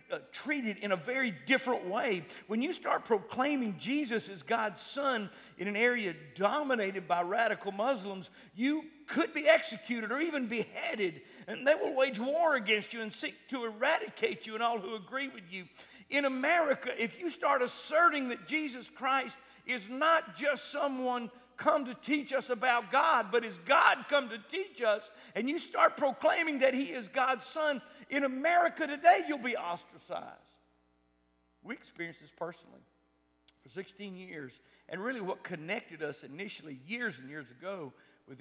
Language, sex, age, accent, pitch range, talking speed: English, male, 50-69, American, 165-265 Hz, 165 wpm